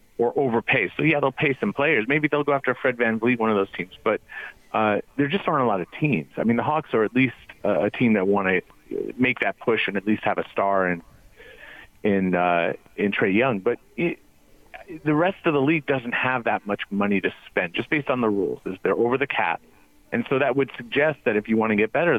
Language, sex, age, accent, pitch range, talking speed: English, male, 40-59, American, 105-135 Hz, 250 wpm